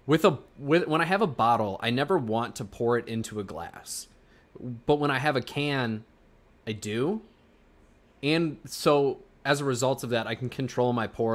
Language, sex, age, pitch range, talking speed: English, male, 20-39, 110-130 Hz, 195 wpm